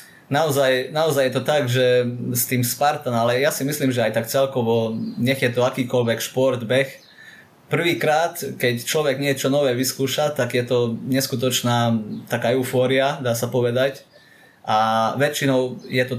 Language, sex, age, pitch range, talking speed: Slovak, male, 20-39, 115-135 Hz, 155 wpm